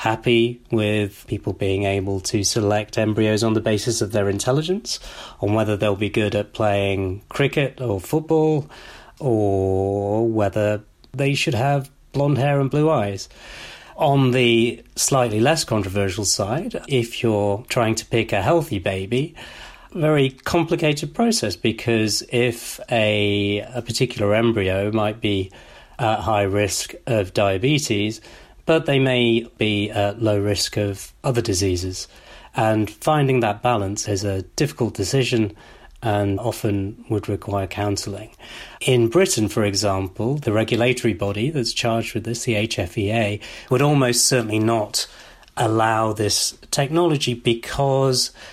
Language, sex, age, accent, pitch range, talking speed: English, male, 40-59, British, 105-125 Hz, 135 wpm